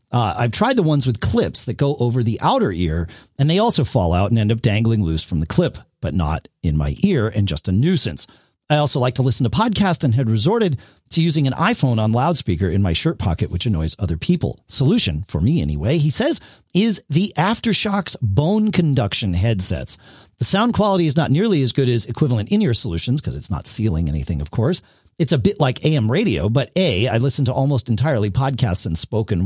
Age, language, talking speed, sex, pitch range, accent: 40-59, English, 220 wpm, male, 105-150 Hz, American